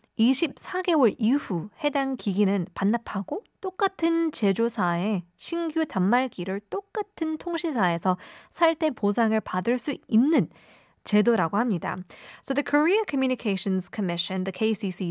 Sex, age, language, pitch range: female, 20-39, Korean, 185-250 Hz